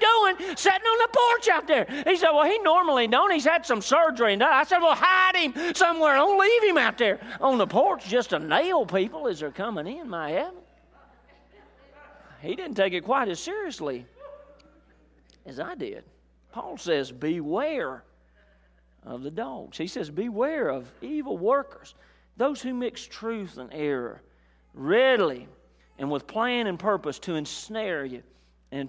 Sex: male